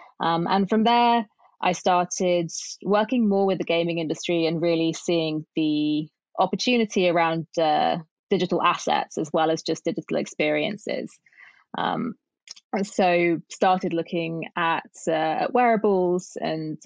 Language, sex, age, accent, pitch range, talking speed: English, female, 20-39, British, 160-185 Hz, 130 wpm